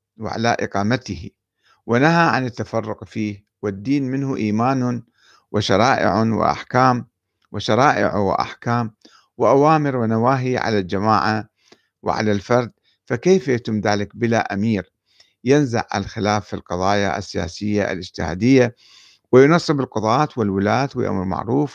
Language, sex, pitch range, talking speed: Arabic, male, 100-125 Hz, 95 wpm